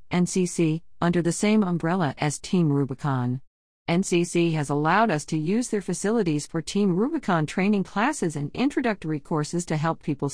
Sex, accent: female, American